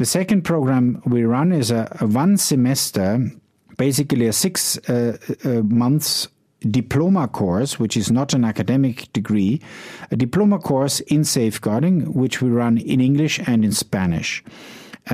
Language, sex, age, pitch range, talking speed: English, male, 50-69, 115-145 Hz, 150 wpm